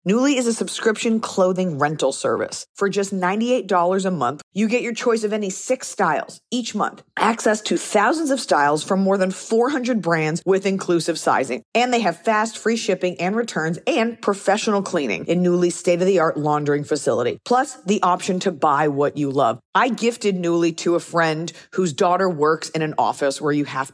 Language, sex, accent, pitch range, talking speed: English, female, American, 155-205 Hz, 195 wpm